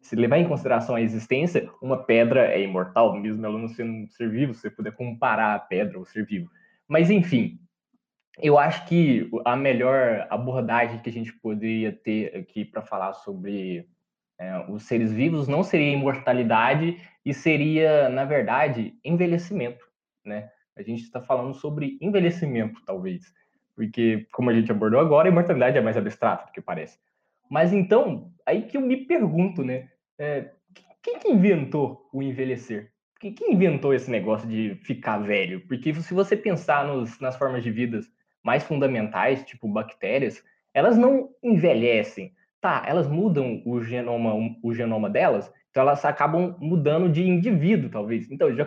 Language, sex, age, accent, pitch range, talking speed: Portuguese, male, 20-39, Brazilian, 115-180 Hz, 160 wpm